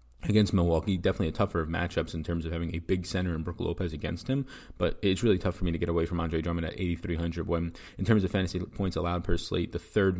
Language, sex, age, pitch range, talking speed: English, male, 20-39, 85-100 Hz, 260 wpm